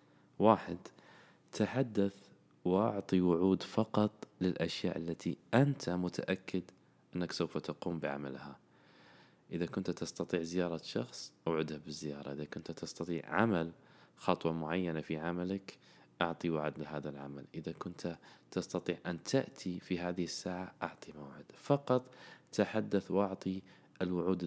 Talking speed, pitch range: 115 wpm, 80-105 Hz